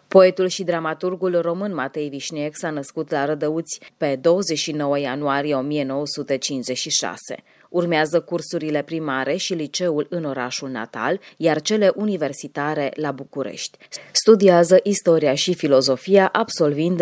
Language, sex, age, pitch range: Romanian, female, 20-39, 140-175 Hz